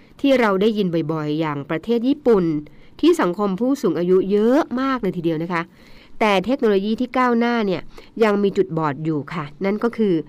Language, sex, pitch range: Thai, female, 170-235 Hz